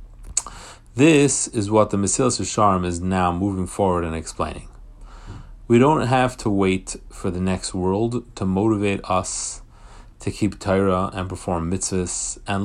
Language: English